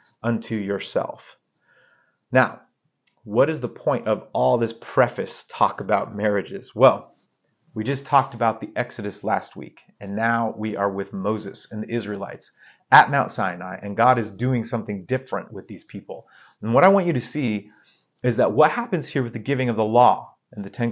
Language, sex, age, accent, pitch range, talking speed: English, male, 30-49, American, 105-130 Hz, 185 wpm